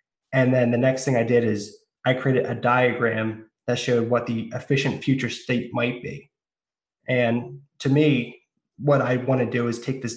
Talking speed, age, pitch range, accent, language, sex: 190 wpm, 20-39, 115-140 Hz, American, English, male